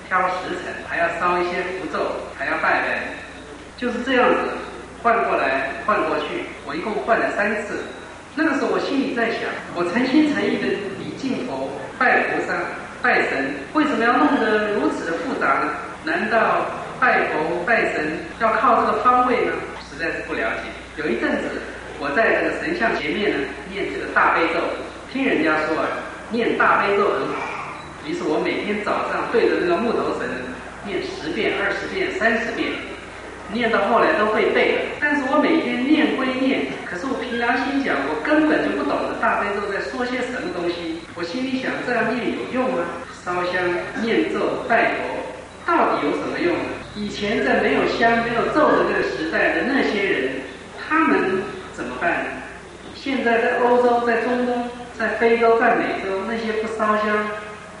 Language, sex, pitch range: English, male, 210-270 Hz